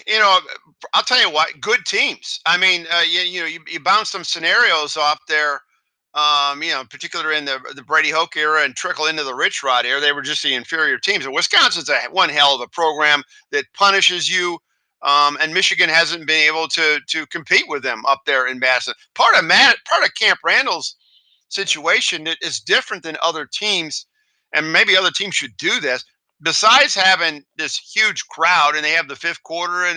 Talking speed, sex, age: 205 wpm, male, 50-69